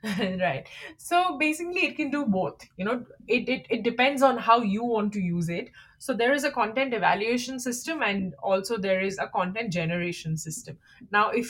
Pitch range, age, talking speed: 180-250 Hz, 20-39, 195 wpm